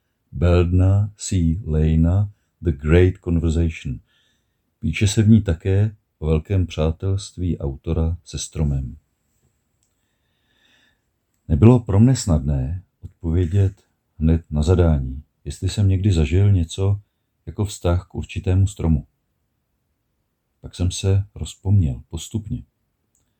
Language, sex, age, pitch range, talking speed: Czech, male, 50-69, 80-105 Hz, 105 wpm